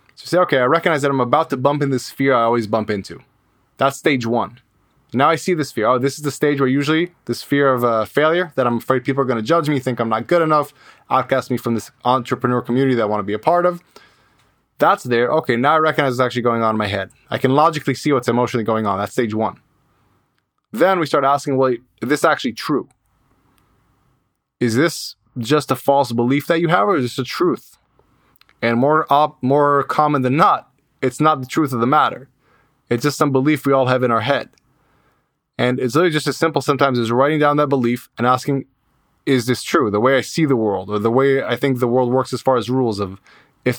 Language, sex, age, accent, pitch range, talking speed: English, male, 20-39, American, 120-145 Hz, 235 wpm